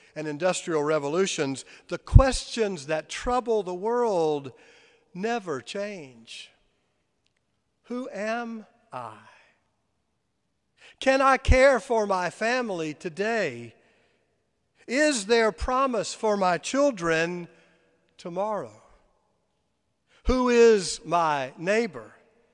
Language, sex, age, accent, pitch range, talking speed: English, male, 50-69, American, 165-225 Hz, 85 wpm